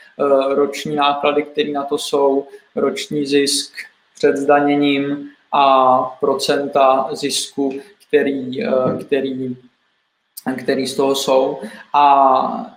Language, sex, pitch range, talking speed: Czech, male, 145-155 Hz, 90 wpm